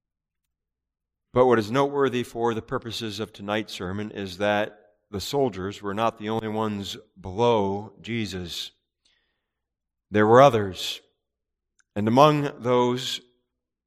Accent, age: American, 40-59